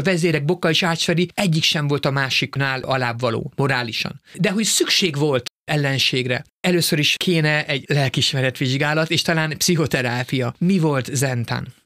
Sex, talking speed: male, 145 wpm